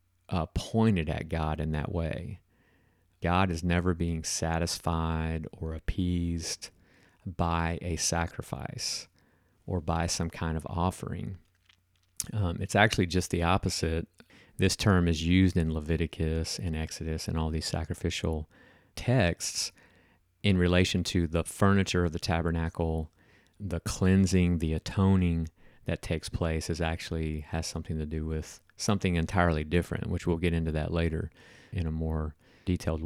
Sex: male